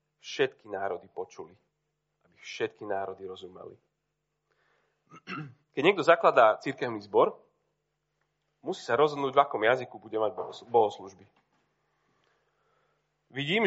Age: 30-49